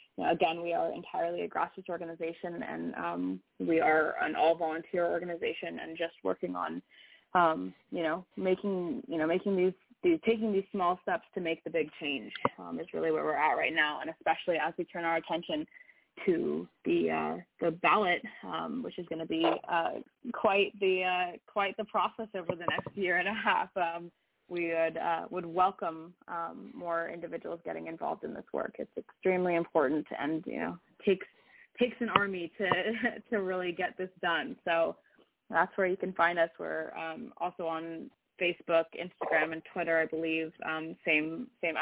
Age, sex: 20-39, female